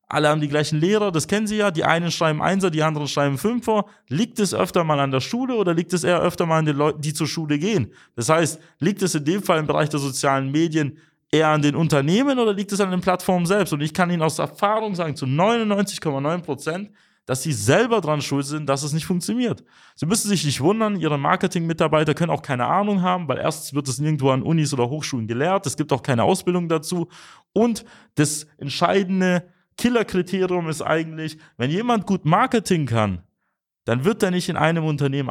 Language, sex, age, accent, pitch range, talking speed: German, male, 30-49, German, 140-185 Hz, 210 wpm